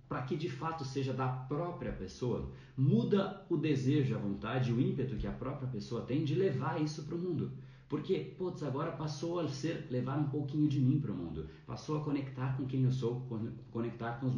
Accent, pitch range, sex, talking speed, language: Brazilian, 95-135 Hz, male, 210 wpm, Portuguese